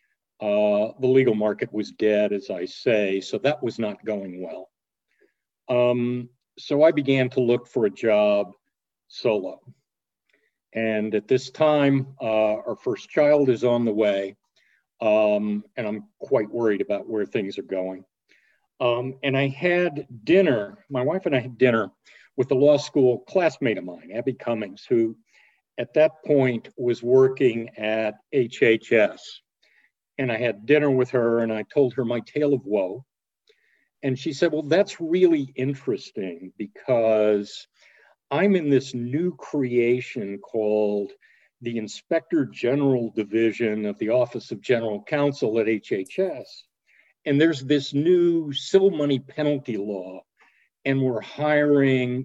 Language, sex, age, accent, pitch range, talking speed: English, male, 50-69, American, 110-145 Hz, 145 wpm